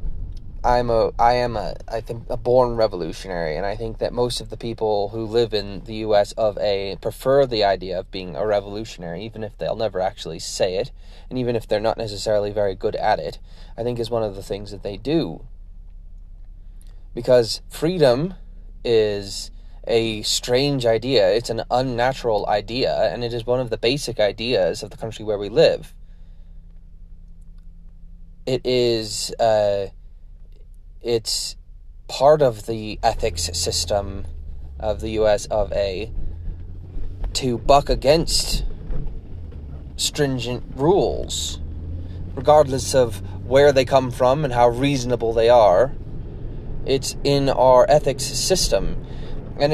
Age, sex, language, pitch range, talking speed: 20-39, male, English, 85-120 Hz, 145 wpm